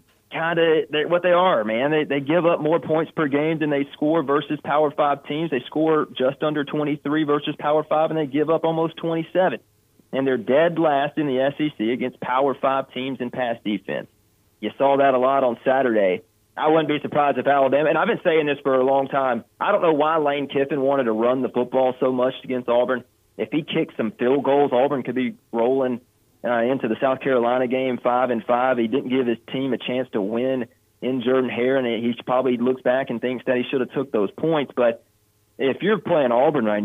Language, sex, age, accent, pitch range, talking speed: English, male, 40-59, American, 125-150 Hz, 225 wpm